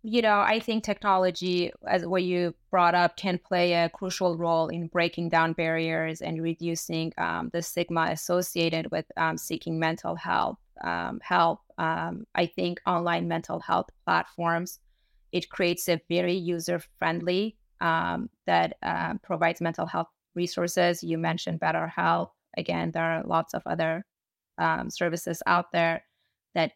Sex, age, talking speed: female, 20-39, 145 wpm